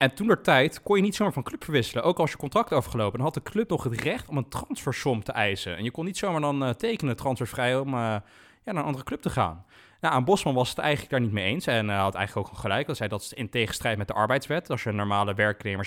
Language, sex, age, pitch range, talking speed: Dutch, male, 20-39, 115-150 Hz, 290 wpm